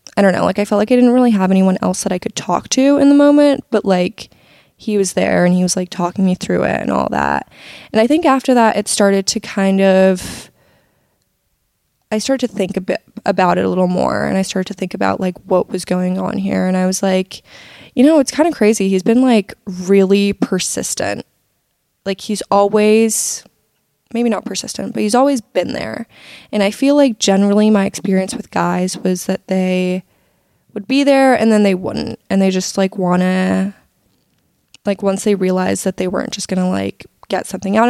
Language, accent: English, American